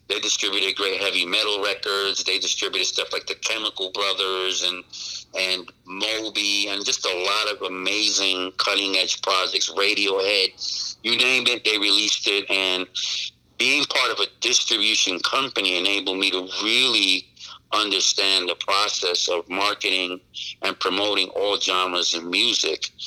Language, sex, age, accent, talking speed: English, male, 50-69, American, 140 wpm